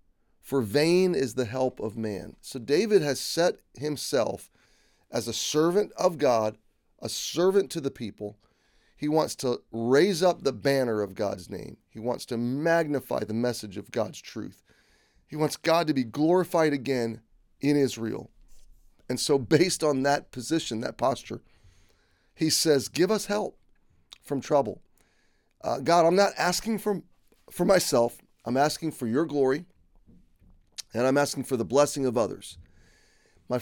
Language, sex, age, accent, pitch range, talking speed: English, male, 30-49, American, 115-160 Hz, 155 wpm